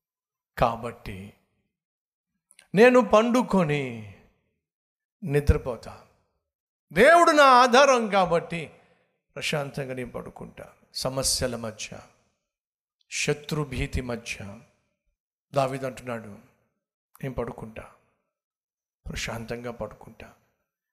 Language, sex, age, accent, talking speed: Telugu, male, 50-69, native, 60 wpm